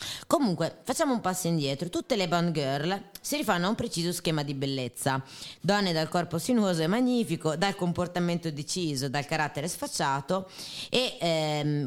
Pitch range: 145-180 Hz